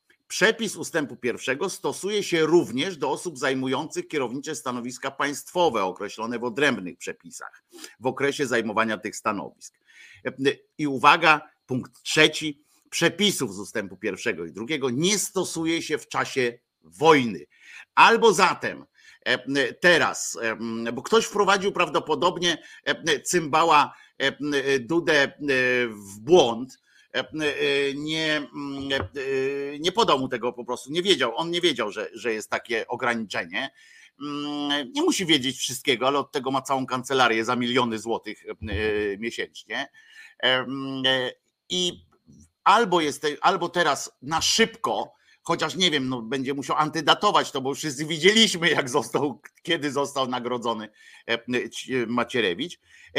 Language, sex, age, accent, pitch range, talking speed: Polish, male, 50-69, native, 125-165 Hz, 115 wpm